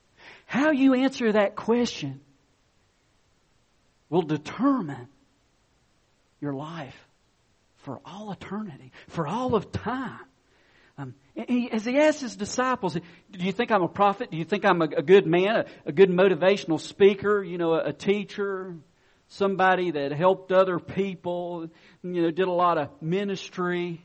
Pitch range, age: 155-205 Hz, 50-69